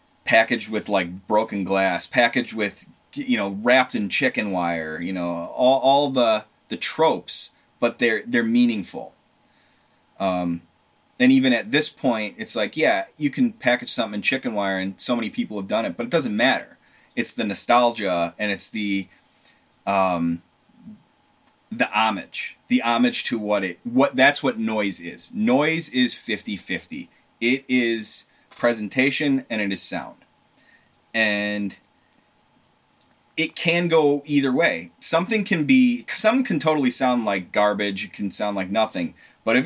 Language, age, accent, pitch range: English, 30-49, American, 100-165 Hz